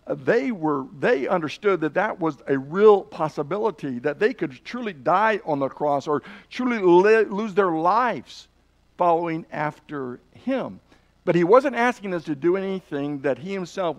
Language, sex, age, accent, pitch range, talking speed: English, male, 60-79, American, 145-195 Hz, 165 wpm